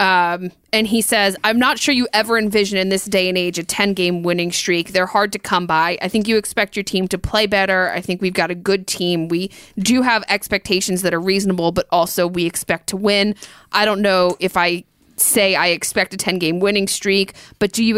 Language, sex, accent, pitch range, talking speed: English, female, American, 180-210 Hz, 225 wpm